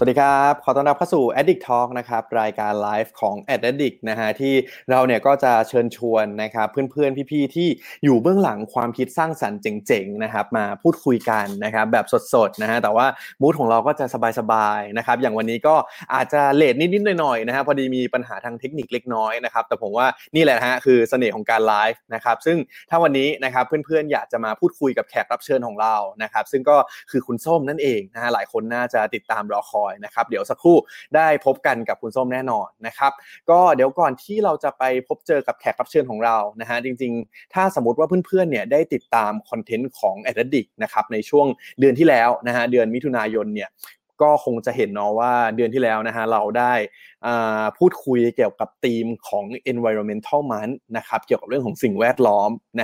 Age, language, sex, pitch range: 20-39, Thai, male, 115-150 Hz